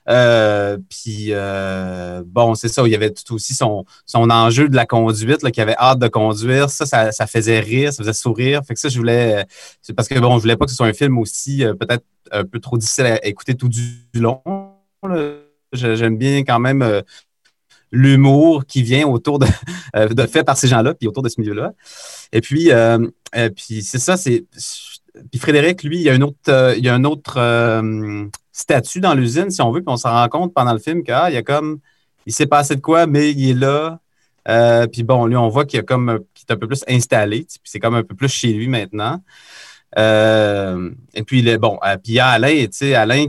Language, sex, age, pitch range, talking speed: French, male, 30-49, 110-140 Hz, 235 wpm